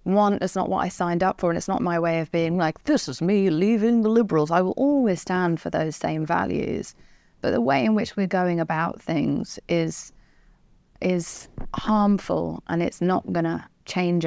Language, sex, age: English, female, 30-49